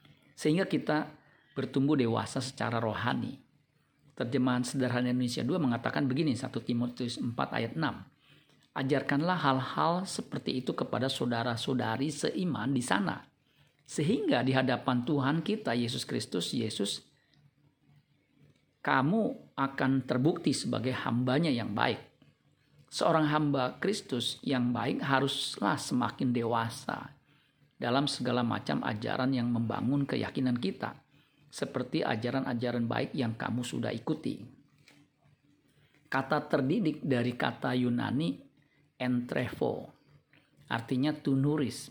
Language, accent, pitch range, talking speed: Indonesian, native, 120-145 Hz, 105 wpm